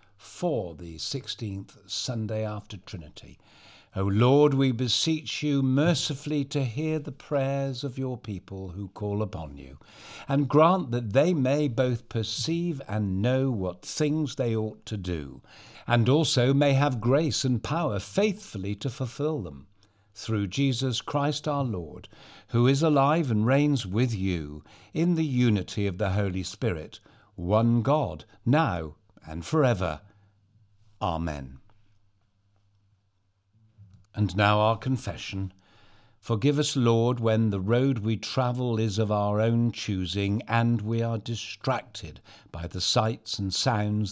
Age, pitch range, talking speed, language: 60-79, 100-130 Hz, 135 wpm, English